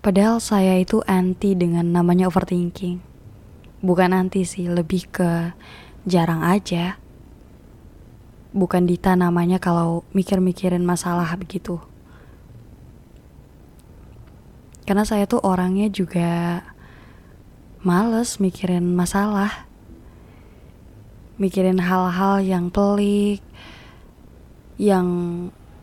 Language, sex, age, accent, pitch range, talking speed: Indonesian, female, 20-39, native, 175-195 Hz, 80 wpm